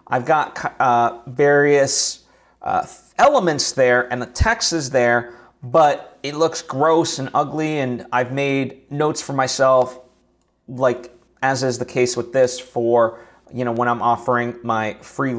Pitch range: 115-140 Hz